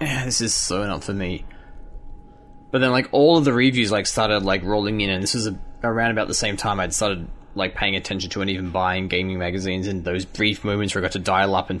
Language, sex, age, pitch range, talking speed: English, male, 20-39, 95-120 Hz, 245 wpm